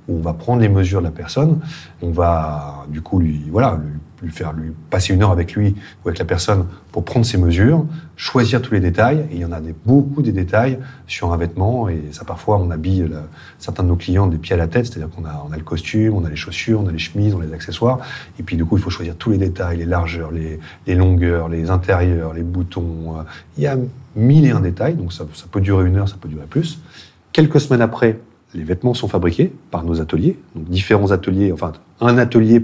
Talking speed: 250 wpm